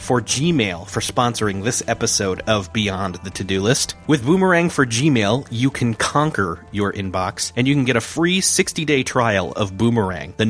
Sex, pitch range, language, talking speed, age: male, 105-135 Hz, English, 175 wpm, 30-49